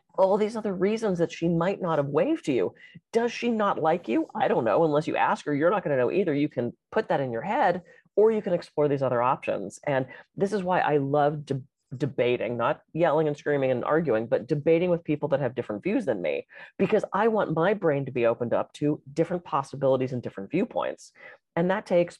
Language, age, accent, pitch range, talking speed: English, 30-49, American, 135-195 Hz, 225 wpm